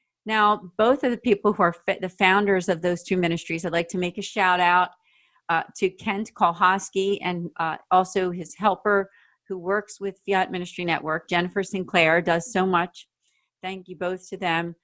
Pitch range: 175-210 Hz